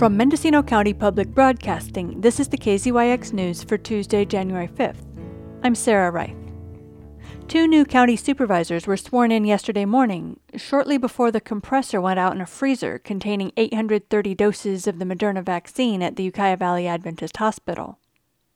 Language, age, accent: English, 40-59, American